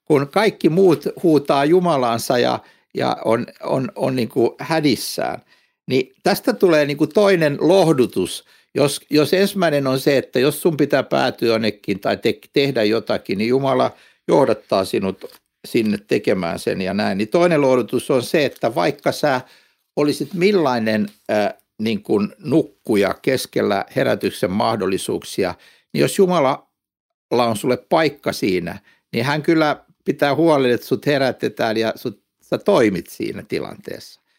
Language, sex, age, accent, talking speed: Finnish, male, 60-79, native, 140 wpm